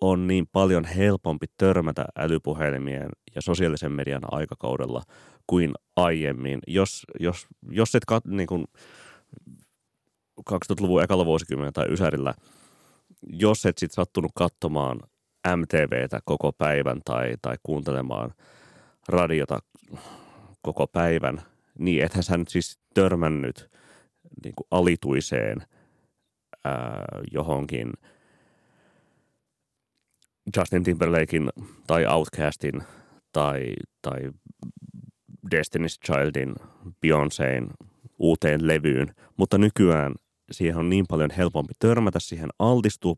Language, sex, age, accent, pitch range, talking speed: Finnish, male, 30-49, native, 70-90 Hz, 95 wpm